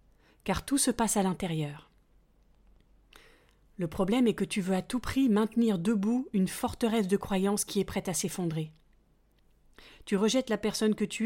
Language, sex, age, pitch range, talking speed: French, female, 40-59, 180-230 Hz, 170 wpm